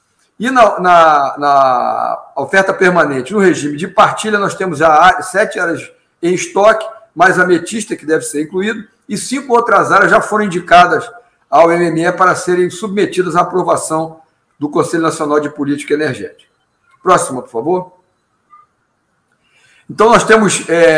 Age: 50-69